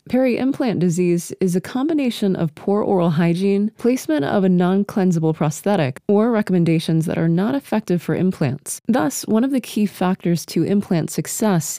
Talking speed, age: 160 wpm, 20-39